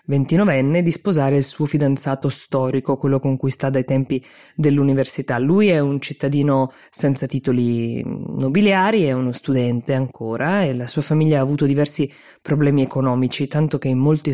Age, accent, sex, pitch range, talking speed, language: 20-39, native, female, 130-155 Hz, 155 wpm, Italian